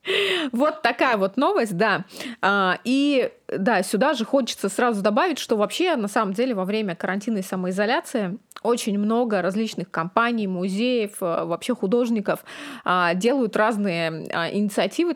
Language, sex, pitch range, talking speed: Russian, female, 190-245 Hz, 125 wpm